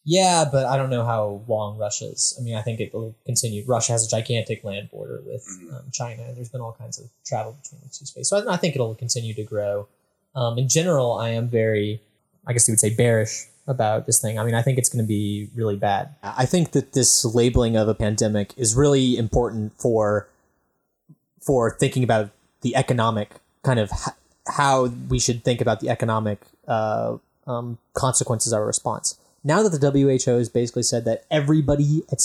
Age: 20-39